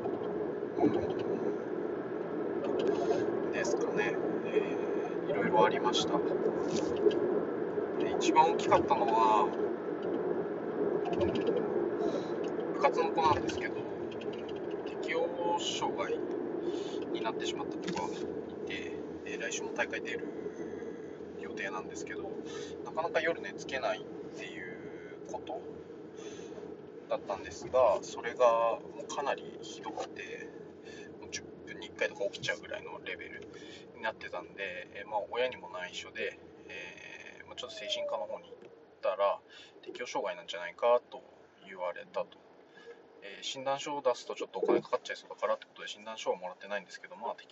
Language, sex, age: Japanese, male, 20-39